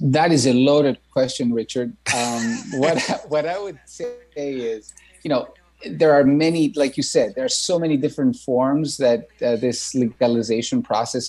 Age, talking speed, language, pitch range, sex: 30-49, 170 wpm, English, 120-145 Hz, male